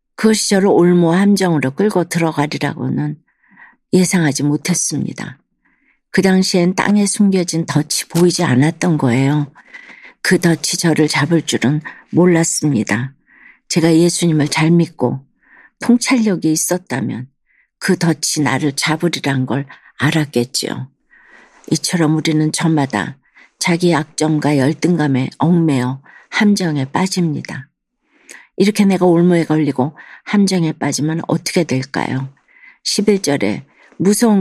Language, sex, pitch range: Korean, female, 145-190 Hz